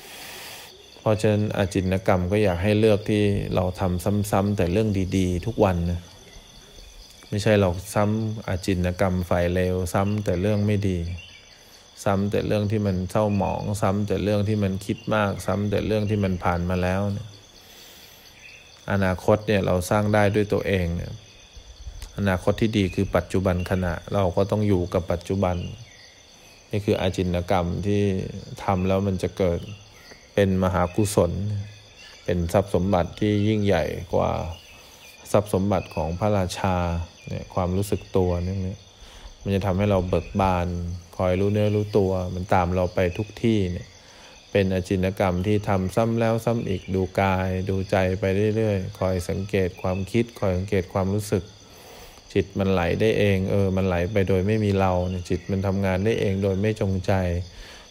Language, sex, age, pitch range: English, male, 20-39, 90-105 Hz